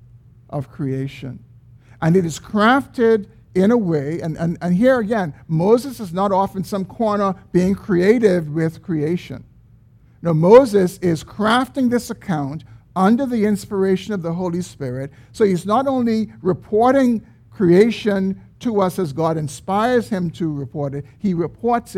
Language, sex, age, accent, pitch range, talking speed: English, male, 50-69, American, 130-205 Hz, 150 wpm